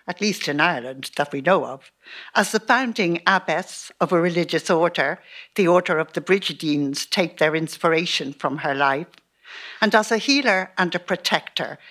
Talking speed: 170 wpm